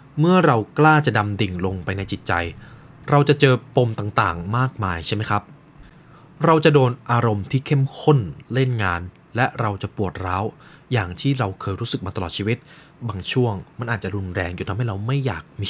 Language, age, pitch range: Thai, 20-39, 100-150 Hz